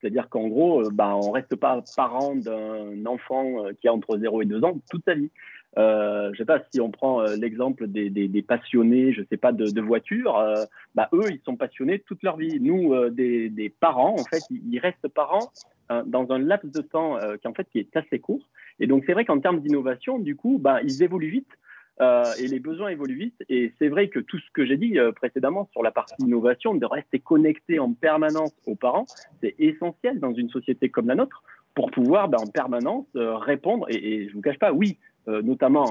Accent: French